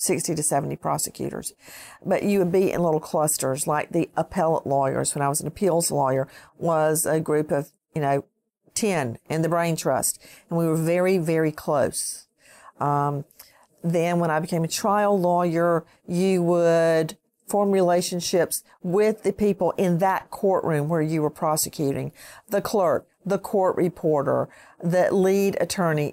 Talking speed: 155 wpm